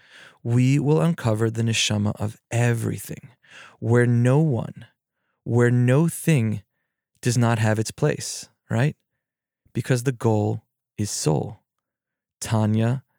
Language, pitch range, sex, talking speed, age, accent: English, 110-125 Hz, male, 115 wpm, 20-39, American